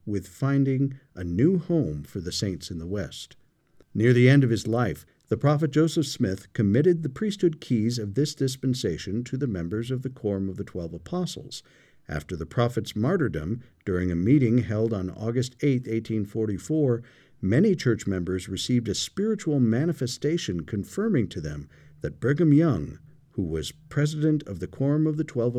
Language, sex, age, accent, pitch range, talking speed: English, male, 50-69, American, 95-145 Hz, 170 wpm